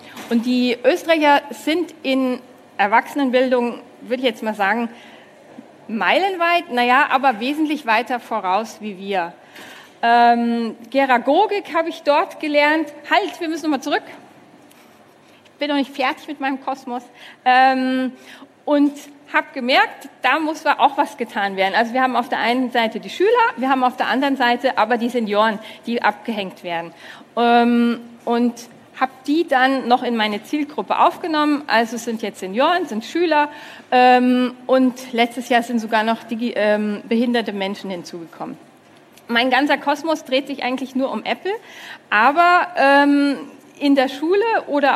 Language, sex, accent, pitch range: German, female, German, 235-290 Hz